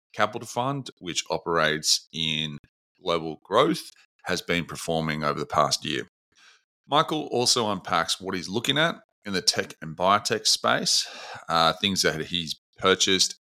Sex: male